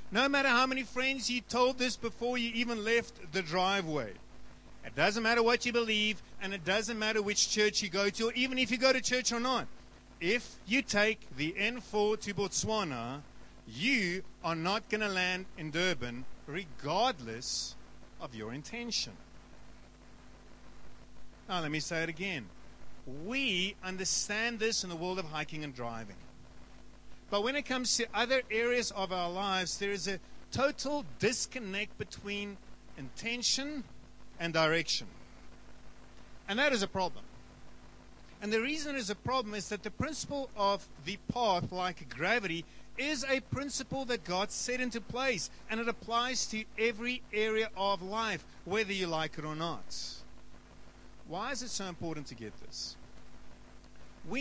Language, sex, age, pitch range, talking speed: English, male, 50-69, 175-240 Hz, 160 wpm